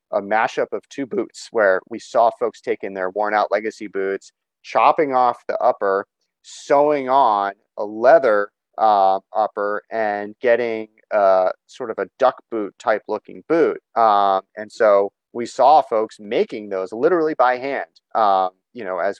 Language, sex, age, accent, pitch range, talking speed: English, male, 30-49, American, 100-125 Hz, 165 wpm